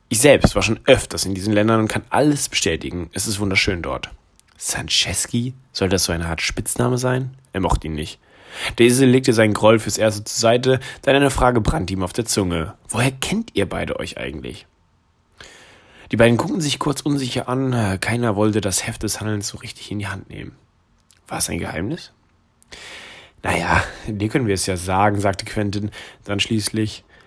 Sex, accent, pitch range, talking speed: male, German, 100-120 Hz, 185 wpm